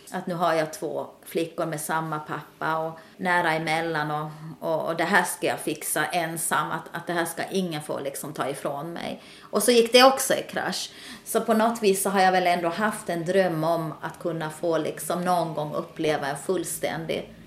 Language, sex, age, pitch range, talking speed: Swedish, female, 30-49, 150-185 Hz, 210 wpm